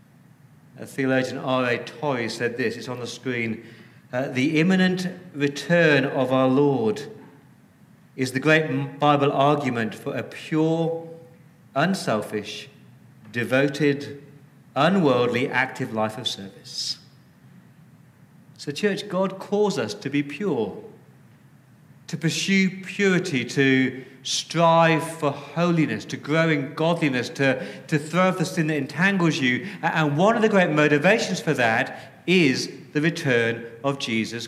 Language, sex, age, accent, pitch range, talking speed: English, male, 50-69, British, 135-180 Hz, 130 wpm